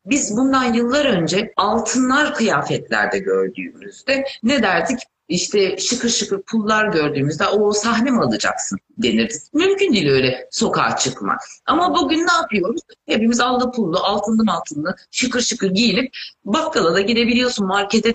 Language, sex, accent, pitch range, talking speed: Turkish, female, native, 190-260 Hz, 130 wpm